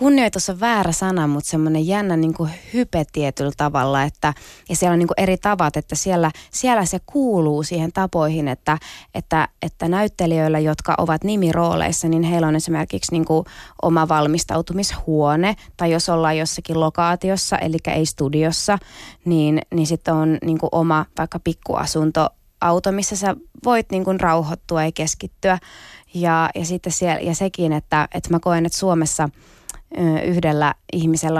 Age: 20-39